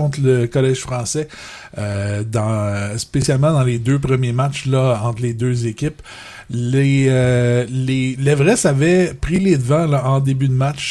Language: French